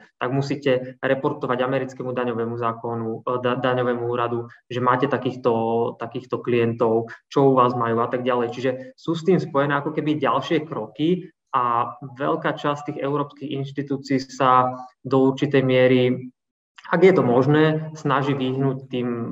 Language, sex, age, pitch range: Slovak, male, 20-39, 120-135 Hz